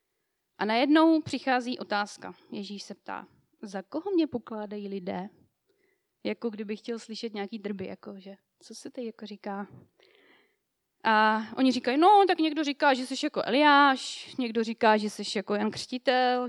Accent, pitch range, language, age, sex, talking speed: native, 215-285 Hz, Czech, 20-39, female, 155 wpm